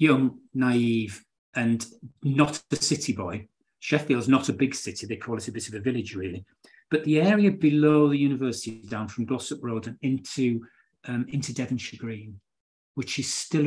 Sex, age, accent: male, 40-59, British